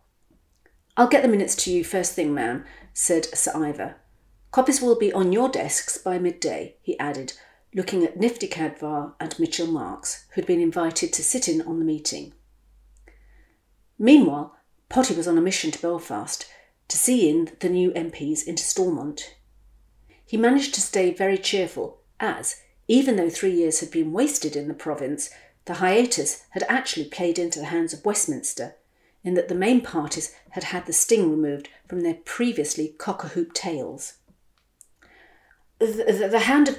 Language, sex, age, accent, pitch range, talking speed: English, female, 50-69, British, 165-245 Hz, 165 wpm